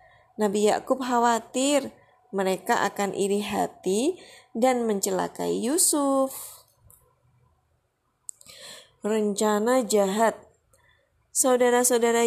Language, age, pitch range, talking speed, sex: Indonesian, 20-39, 200-245 Hz, 65 wpm, female